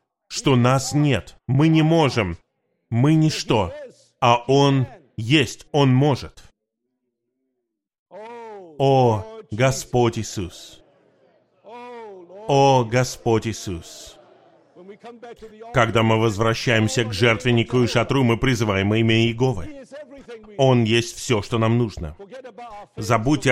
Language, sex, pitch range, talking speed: Russian, male, 110-150 Hz, 95 wpm